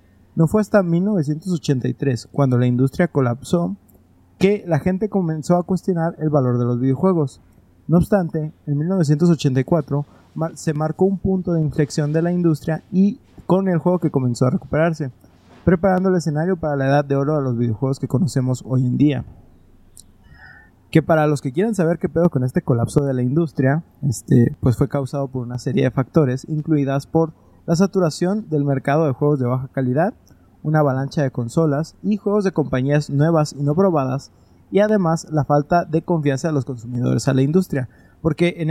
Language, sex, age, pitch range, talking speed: Spanish, male, 30-49, 135-175 Hz, 180 wpm